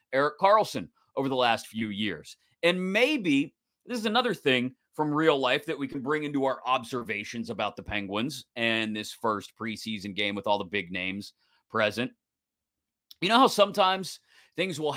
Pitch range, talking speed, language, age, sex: 120-190 Hz, 170 wpm, English, 30-49, male